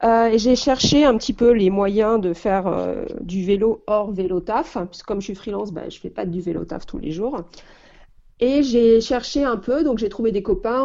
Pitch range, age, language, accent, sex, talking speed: 185-230 Hz, 40-59, French, French, female, 240 wpm